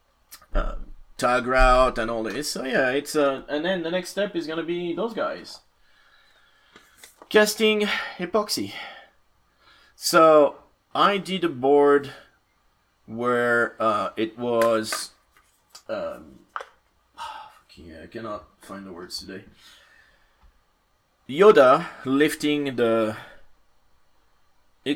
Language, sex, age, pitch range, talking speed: English, male, 30-49, 105-145 Hz, 100 wpm